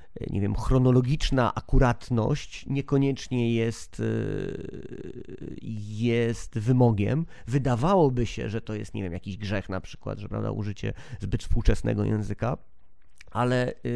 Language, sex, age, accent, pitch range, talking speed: Polish, male, 30-49, native, 115-140 Hz, 110 wpm